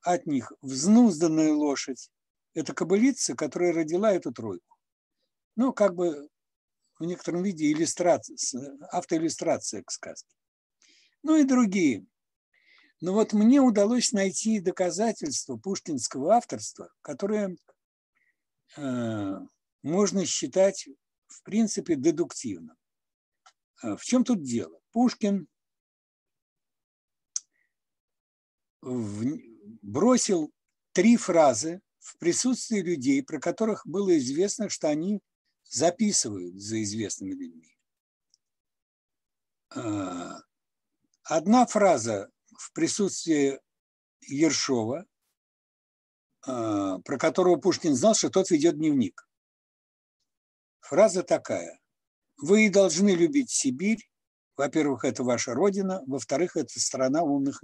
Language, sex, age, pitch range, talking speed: Russian, male, 60-79, 155-255 Hz, 90 wpm